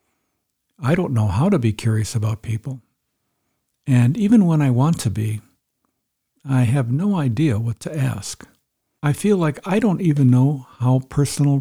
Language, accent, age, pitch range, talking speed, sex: English, American, 60-79, 110-145 Hz, 165 wpm, male